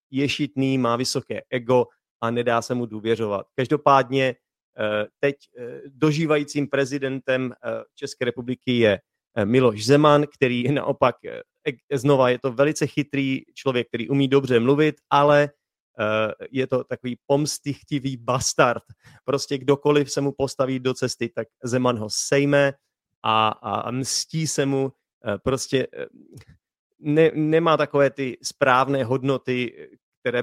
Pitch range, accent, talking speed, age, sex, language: 115-140 Hz, native, 115 wpm, 30-49, male, Czech